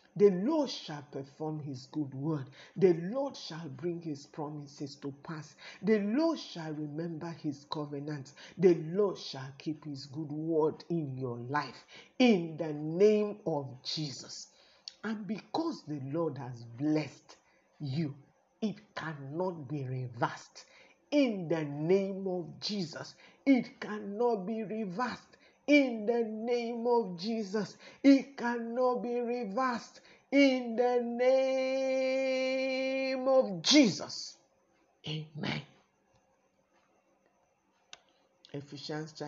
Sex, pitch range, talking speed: male, 150-220 Hz, 120 wpm